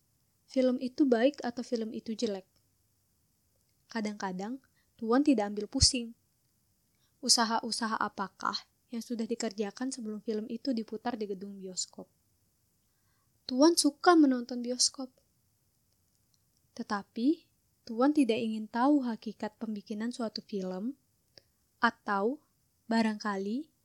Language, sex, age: Indonesian, female, 20-39